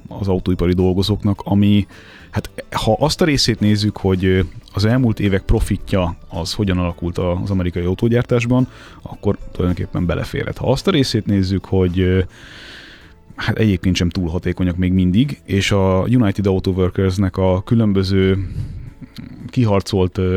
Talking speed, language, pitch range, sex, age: 135 wpm, Hungarian, 90-110 Hz, male, 30-49